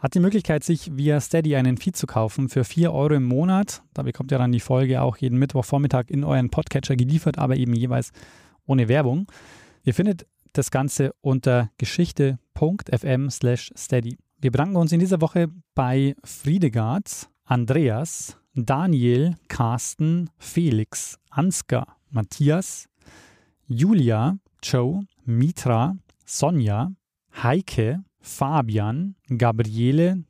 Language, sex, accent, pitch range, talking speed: German, male, German, 125-170 Hz, 125 wpm